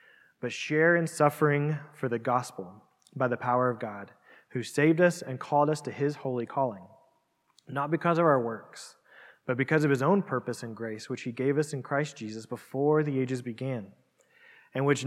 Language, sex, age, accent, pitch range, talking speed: English, male, 20-39, American, 120-150 Hz, 190 wpm